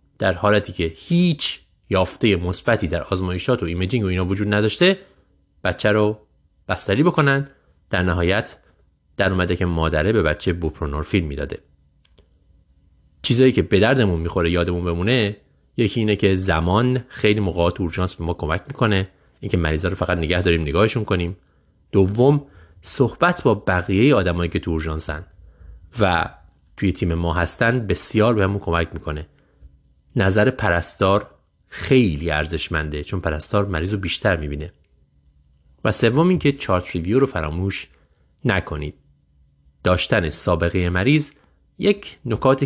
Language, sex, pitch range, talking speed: Persian, male, 80-105 Hz, 135 wpm